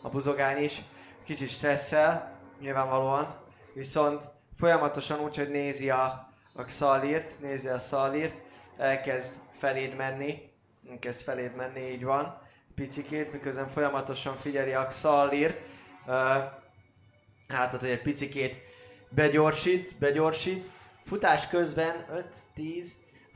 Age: 20-39